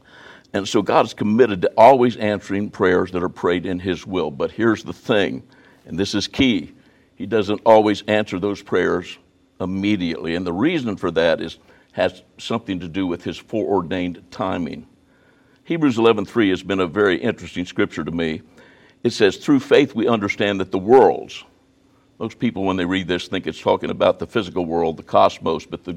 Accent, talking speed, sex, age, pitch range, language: American, 185 wpm, male, 60-79, 90-105 Hz, English